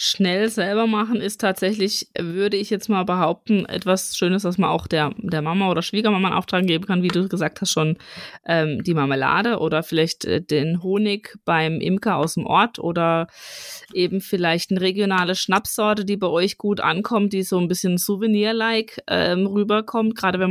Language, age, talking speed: German, 20-39, 180 wpm